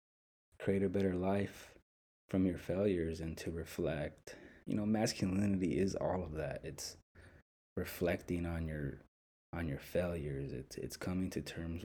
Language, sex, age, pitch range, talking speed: English, male, 20-39, 80-95 Hz, 145 wpm